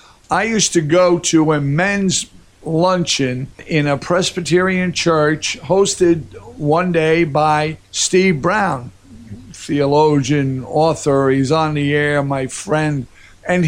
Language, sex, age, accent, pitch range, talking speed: English, male, 50-69, American, 150-180 Hz, 120 wpm